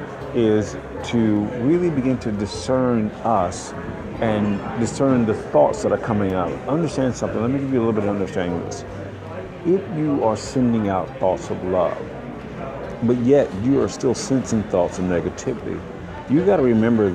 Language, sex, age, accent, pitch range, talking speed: English, male, 50-69, American, 95-120 Hz, 165 wpm